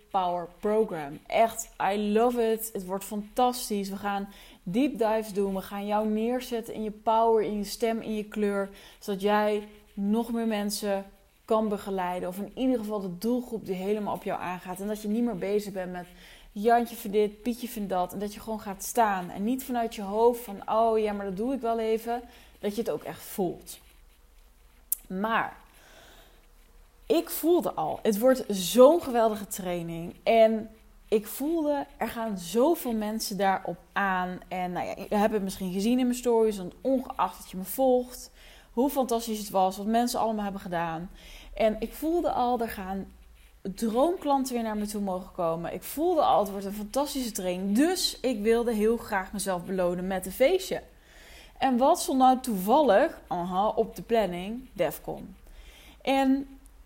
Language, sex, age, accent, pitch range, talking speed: Dutch, female, 20-39, Dutch, 195-235 Hz, 180 wpm